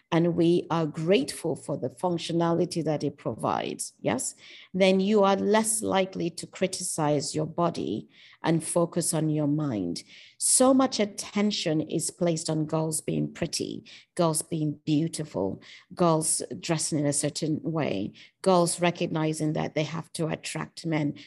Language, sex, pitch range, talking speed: English, female, 160-195 Hz, 145 wpm